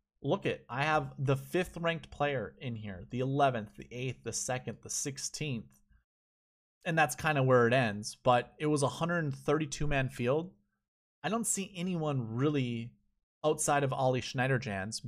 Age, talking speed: 20-39, 160 wpm